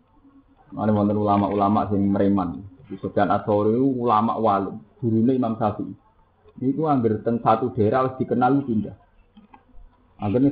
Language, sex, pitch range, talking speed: Indonesian, male, 105-145 Hz, 125 wpm